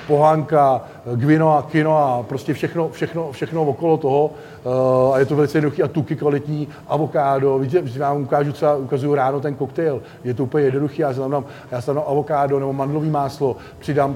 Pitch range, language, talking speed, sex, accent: 130-145 Hz, Czech, 175 wpm, male, native